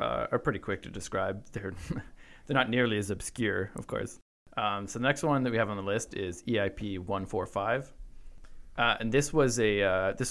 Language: English